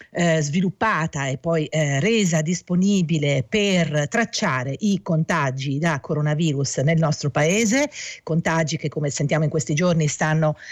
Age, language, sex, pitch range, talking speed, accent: 50-69, Italian, female, 155-200 Hz, 135 wpm, native